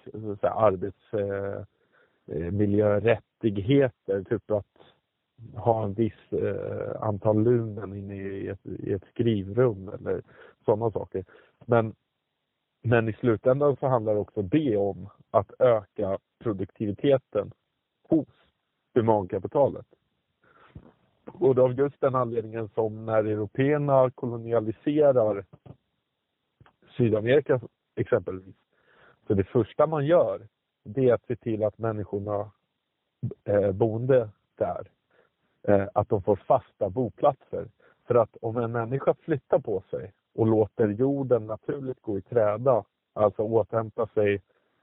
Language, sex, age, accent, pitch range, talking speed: English, male, 30-49, Norwegian, 100-130 Hz, 115 wpm